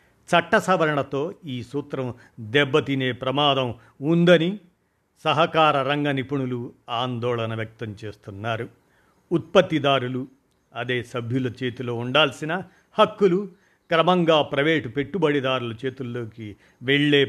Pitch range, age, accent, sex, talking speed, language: 120-155 Hz, 50-69, native, male, 80 wpm, Telugu